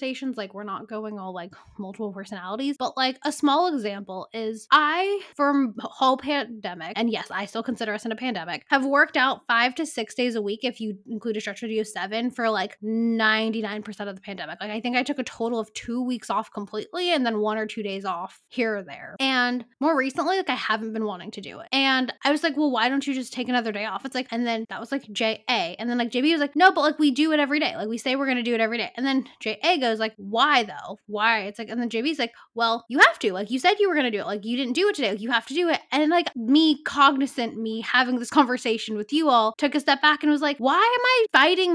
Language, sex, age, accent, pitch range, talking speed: English, female, 10-29, American, 220-280 Hz, 270 wpm